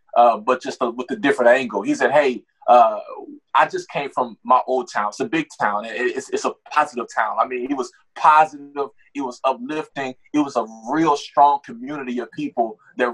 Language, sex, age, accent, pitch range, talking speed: English, male, 20-39, American, 125-175 Hz, 205 wpm